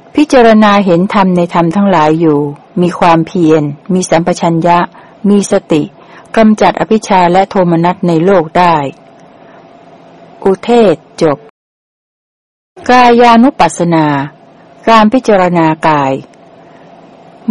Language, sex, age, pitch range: Thai, female, 60-79, 160-210 Hz